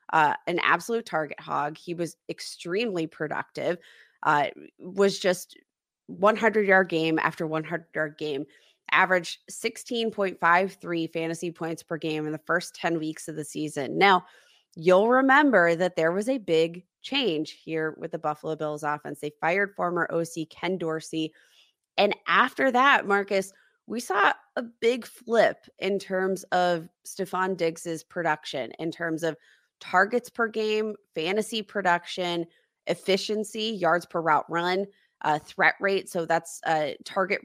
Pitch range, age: 165-210 Hz, 20-39